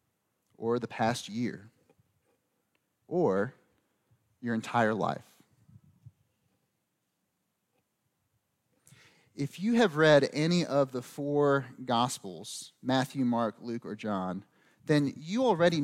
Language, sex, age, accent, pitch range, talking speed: English, male, 30-49, American, 115-155 Hz, 95 wpm